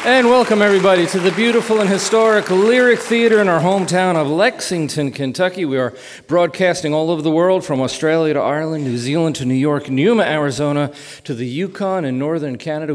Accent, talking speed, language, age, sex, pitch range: American, 185 wpm, English, 40-59, male, 135-175 Hz